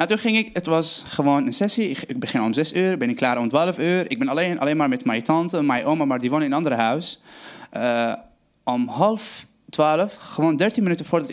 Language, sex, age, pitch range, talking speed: Dutch, male, 20-39, 145-205 Hz, 230 wpm